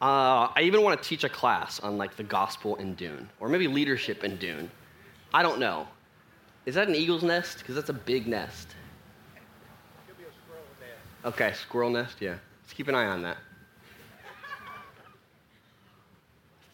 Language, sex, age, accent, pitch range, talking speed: English, male, 30-49, American, 110-135 Hz, 155 wpm